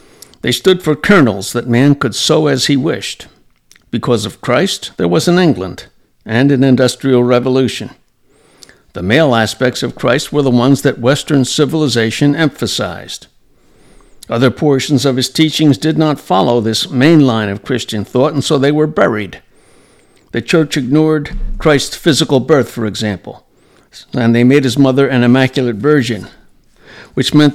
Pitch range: 115-145 Hz